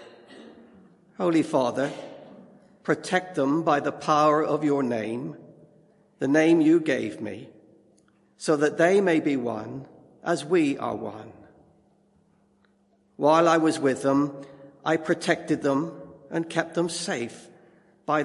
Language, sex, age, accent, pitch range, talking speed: English, male, 50-69, British, 135-170 Hz, 125 wpm